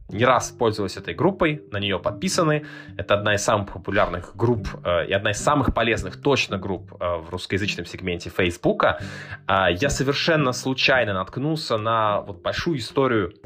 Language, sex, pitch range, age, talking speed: Russian, male, 100-130 Hz, 20-39, 155 wpm